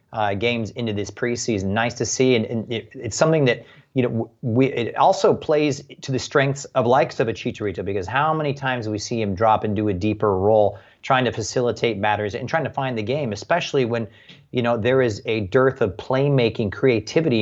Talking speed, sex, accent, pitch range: 215 wpm, male, American, 110-130 Hz